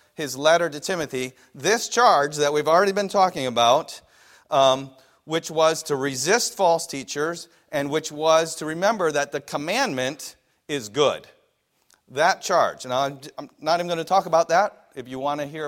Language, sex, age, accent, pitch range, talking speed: English, male, 40-59, American, 140-180 Hz, 170 wpm